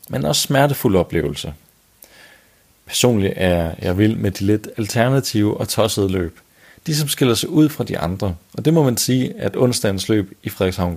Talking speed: 185 wpm